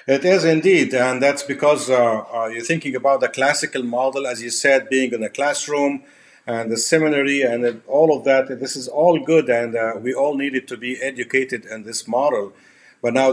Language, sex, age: English, male, 50-69